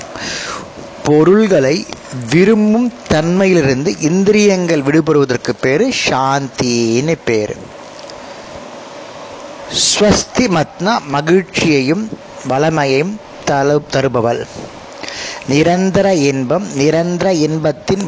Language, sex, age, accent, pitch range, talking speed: Tamil, male, 30-49, native, 135-185 Hz, 55 wpm